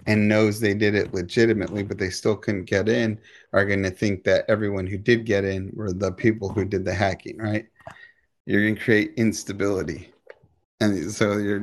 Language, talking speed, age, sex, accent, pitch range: English, 195 wpm, 30-49, male, American, 105-125 Hz